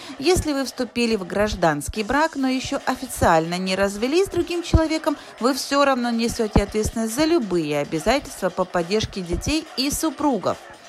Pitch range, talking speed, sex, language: 175-270 Hz, 145 wpm, female, Russian